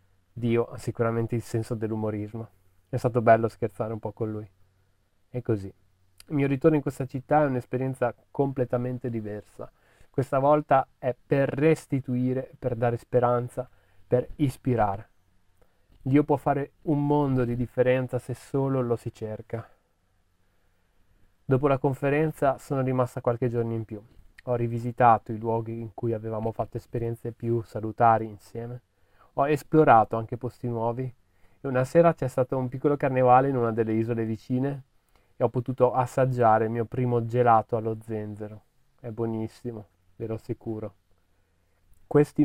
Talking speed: 145 wpm